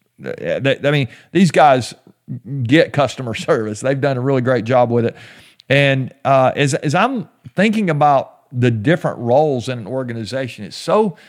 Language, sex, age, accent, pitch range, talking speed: English, male, 50-69, American, 120-155 Hz, 160 wpm